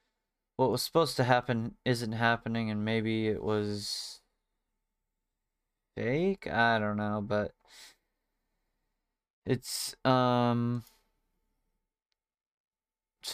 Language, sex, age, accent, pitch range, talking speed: English, male, 20-39, American, 105-130 Hz, 85 wpm